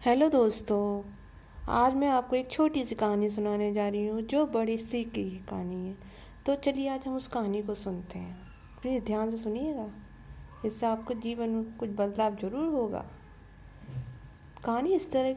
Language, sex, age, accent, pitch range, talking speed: Hindi, female, 50-69, native, 210-250 Hz, 170 wpm